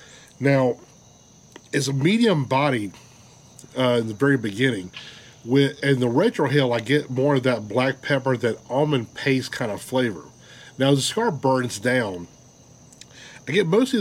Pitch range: 115-140 Hz